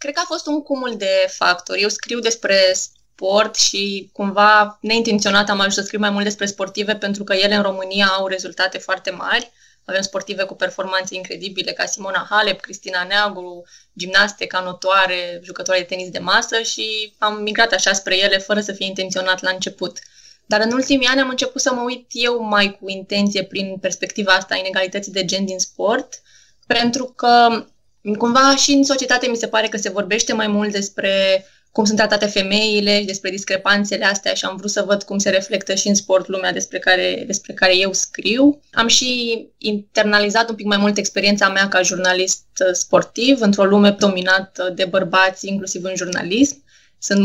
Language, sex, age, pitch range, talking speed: Romanian, female, 20-39, 190-215 Hz, 185 wpm